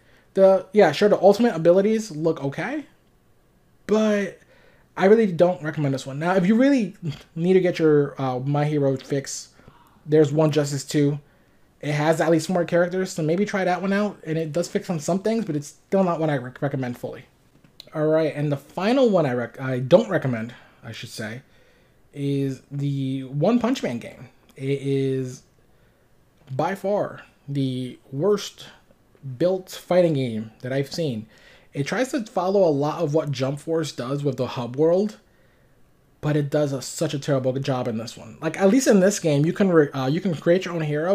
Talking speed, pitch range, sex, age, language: 195 wpm, 135-180 Hz, male, 20-39, English